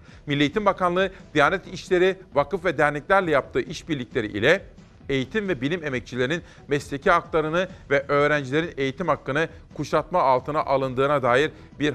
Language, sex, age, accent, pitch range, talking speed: Turkish, male, 40-59, native, 130-165 Hz, 130 wpm